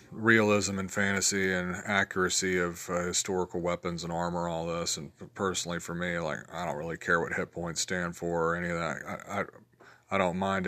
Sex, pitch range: male, 90-100 Hz